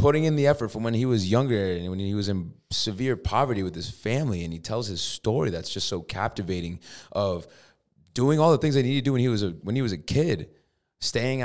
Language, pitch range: English, 100-130 Hz